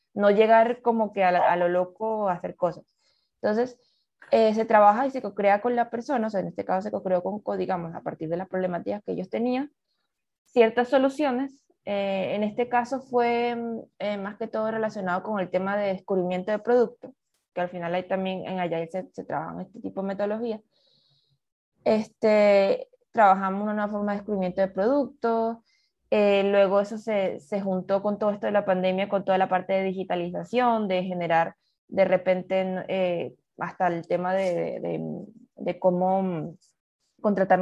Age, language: 20-39, Spanish